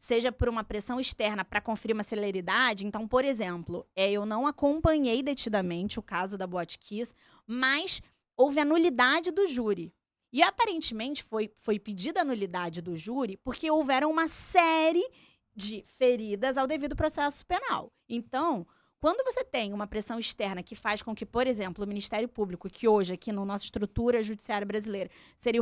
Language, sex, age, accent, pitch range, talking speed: Portuguese, female, 20-39, Brazilian, 205-275 Hz, 165 wpm